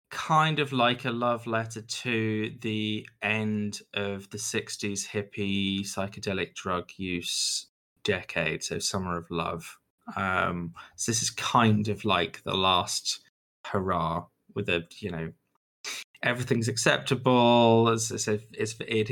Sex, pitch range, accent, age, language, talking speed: male, 95-120 Hz, British, 20-39, English, 130 wpm